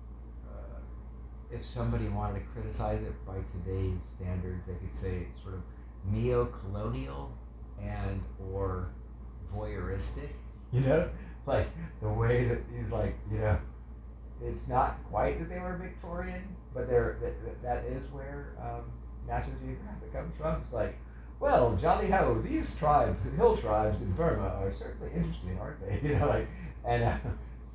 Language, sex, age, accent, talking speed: English, male, 30-49, American, 150 wpm